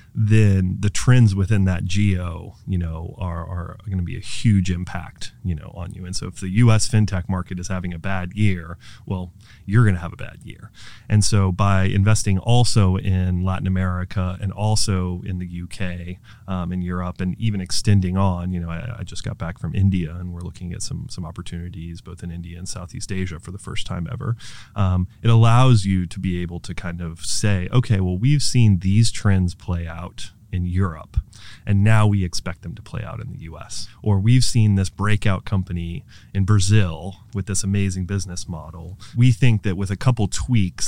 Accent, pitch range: American, 90-110 Hz